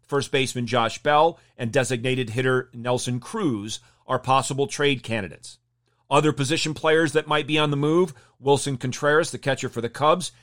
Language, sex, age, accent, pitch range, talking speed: English, male, 40-59, American, 120-150 Hz, 165 wpm